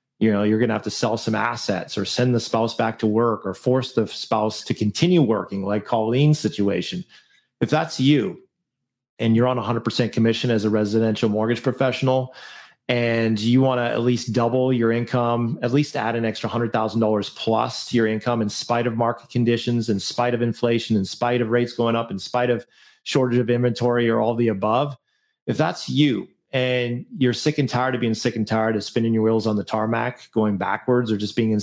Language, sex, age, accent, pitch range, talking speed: English, male, 30-49, American, 110-130 Hz, 210 wpm